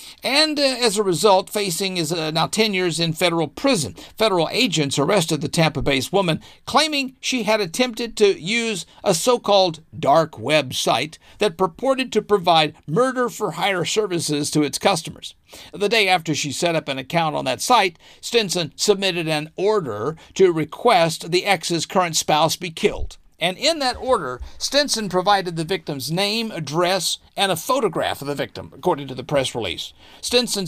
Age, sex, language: 50-69, male, English